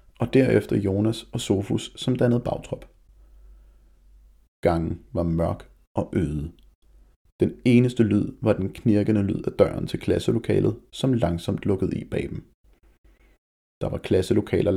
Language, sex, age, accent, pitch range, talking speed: Danish, male, 30-49, native, 85-110 Hz, 135 wpm